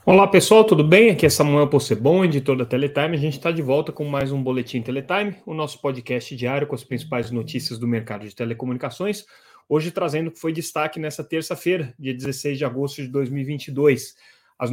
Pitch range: 125-155 Hz